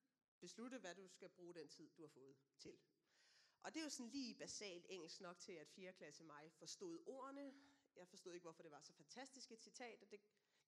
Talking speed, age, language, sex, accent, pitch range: 225 wpm, 30-49, Danish, female, native, 180-255 Hz